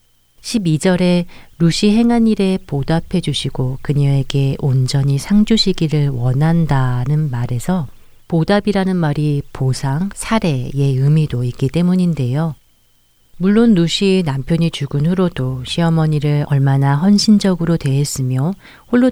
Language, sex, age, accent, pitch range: Korean, female, 40-59, native, 135-170 Hz